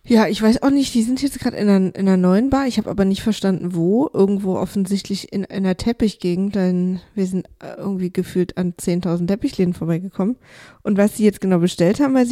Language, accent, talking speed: German, German, 205 wpm